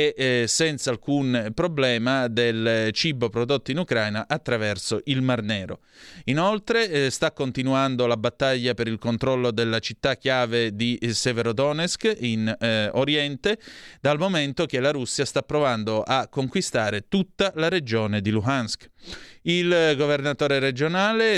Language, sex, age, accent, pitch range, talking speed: Italian, male, 30-49, native, 115-140 Hz, 130 wpm